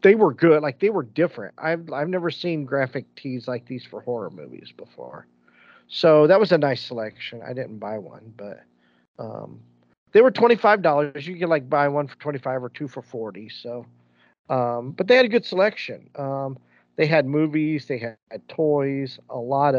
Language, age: English, 40-59